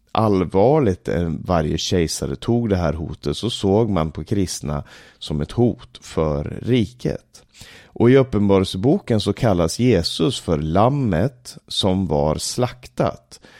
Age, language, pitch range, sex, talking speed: 30-49, Swedish, 80-120 Hz, male, 125 wpm